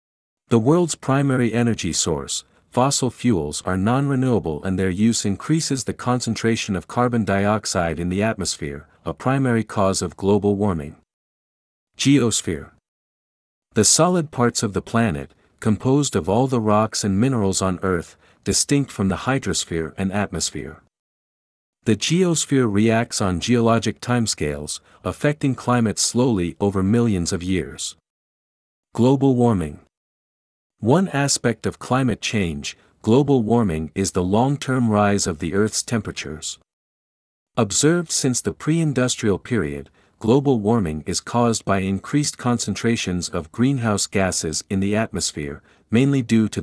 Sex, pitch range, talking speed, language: male, 95-125 Hz, 130 wpm, Vietnamese